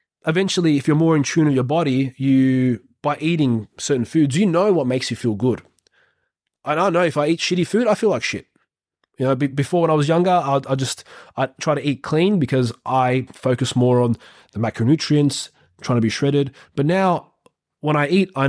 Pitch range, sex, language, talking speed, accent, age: 130-165 Hz, male, English, 215 wpm, Australian, 20-39